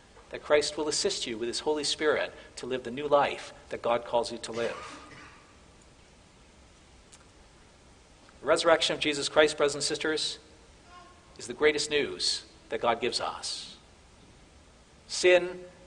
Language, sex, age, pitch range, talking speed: English, male, 50-69, 125-165 Hz, 140 wpm